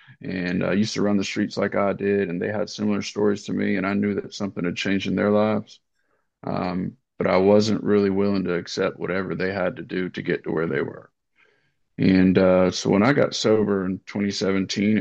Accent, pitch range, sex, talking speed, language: American, 100-105 Hz, male, 220 wpm, English